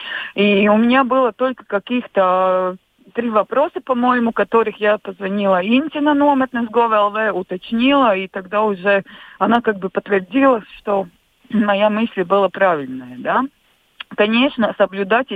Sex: female